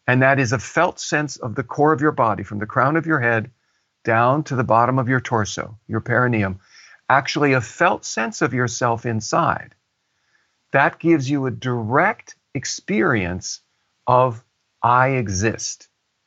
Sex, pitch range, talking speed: male, 115-145 Hz, 160 wpm